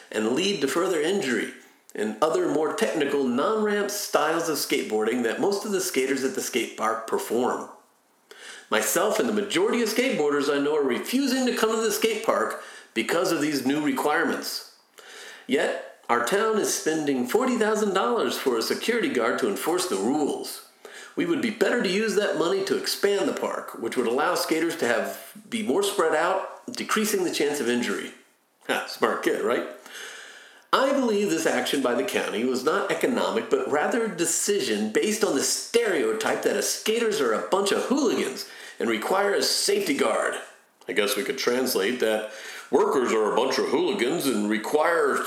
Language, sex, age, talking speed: English, male, 40-59, 175 wpm